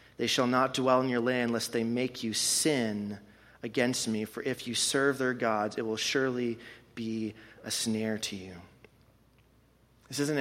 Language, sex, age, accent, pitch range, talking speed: English, male, 30-49, American, 110-125 Hz, 175 wpm